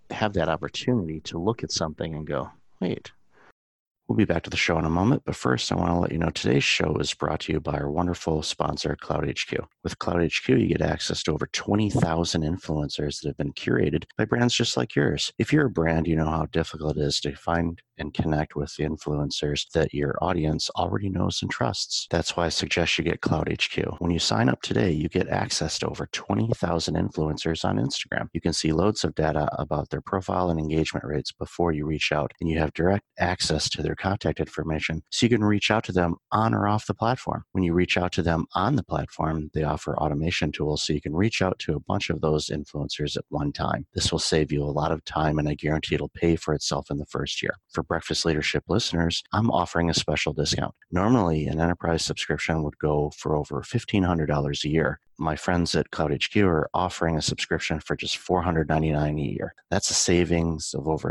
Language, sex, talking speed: English, male, 220 wpm